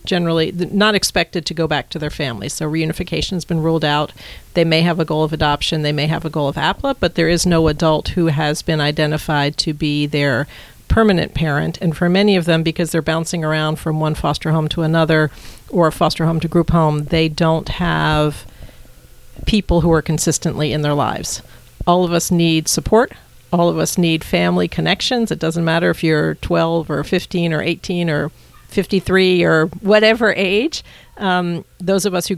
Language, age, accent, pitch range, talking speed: English, 50-69, American, 150-175 Hz, 195 wpm